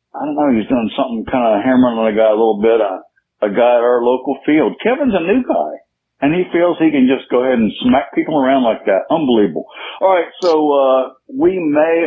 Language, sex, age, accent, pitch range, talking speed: English, male, 60-79, American, 105-140 Hz, 235 wpm